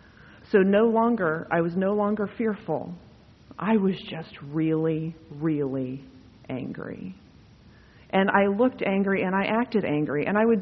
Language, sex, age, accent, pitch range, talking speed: English, female, 40-59, American, 160-225 Hz, 140 wpm